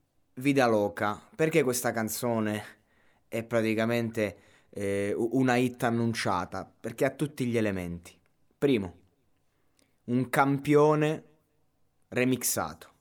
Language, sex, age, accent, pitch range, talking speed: Italian, male, 20-39, native, 100-120 Hz, 90 wpm